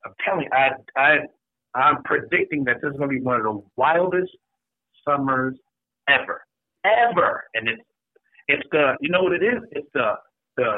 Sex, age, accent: male, 50-69, American